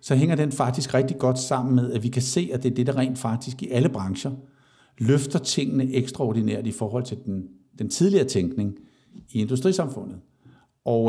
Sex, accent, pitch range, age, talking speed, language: male, native, 120-140 Hz, 60-79, 190 wpm, Danish